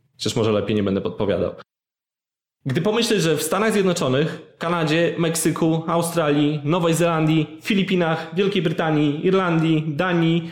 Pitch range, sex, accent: 125-170 Hz, male, native